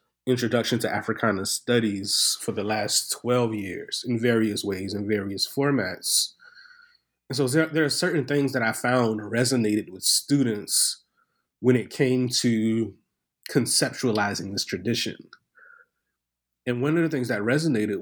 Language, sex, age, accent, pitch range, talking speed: English, male, 30-49, American, 110-135 Hz, 140 wpm